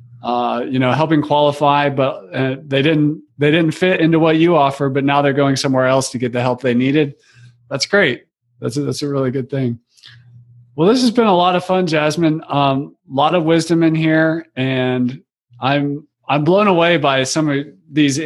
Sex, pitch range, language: male, 130-155 Hz, English